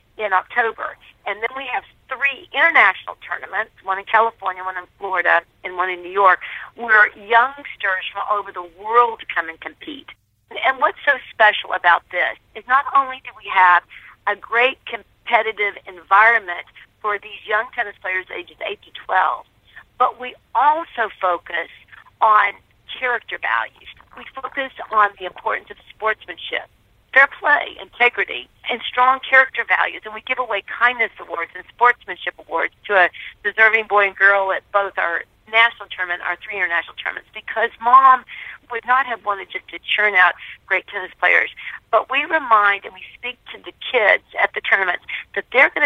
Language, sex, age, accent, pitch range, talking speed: English, female, 50-69, American, 185-240 Hz, 165 wpm